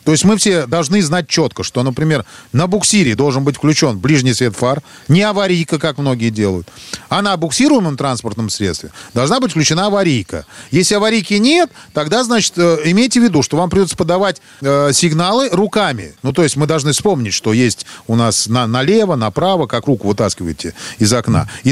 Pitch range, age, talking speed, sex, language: 130-185 Hz, 40-59, 175 wpm, male, Russian